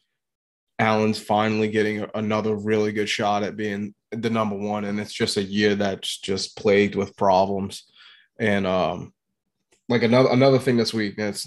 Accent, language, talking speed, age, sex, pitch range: American, English, 165 wpm, 20-39, male, 100-115 Hz